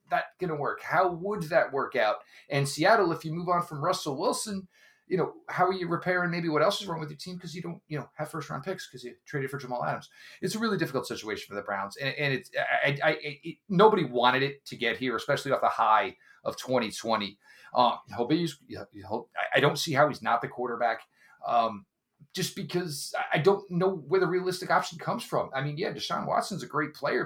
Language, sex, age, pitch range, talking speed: English, male, 40-59, 120-180 Hz, 235 wpm